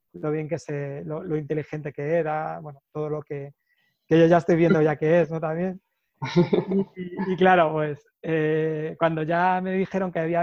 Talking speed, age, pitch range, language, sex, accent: 195 wpm, 20-39, 155-175 Hz, Spanish, male, Spanish